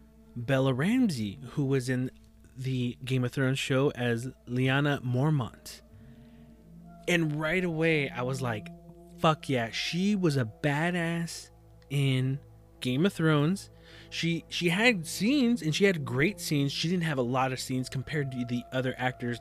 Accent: American